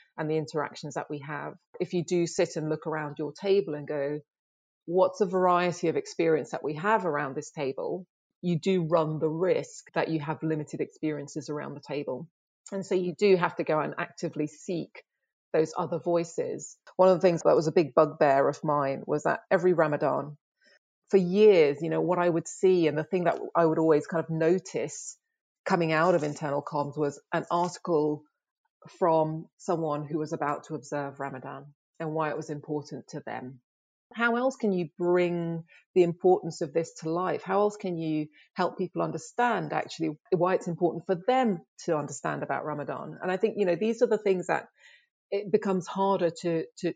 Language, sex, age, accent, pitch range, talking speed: English, female, 30-49, British, 155-185 Hz, 195 wpm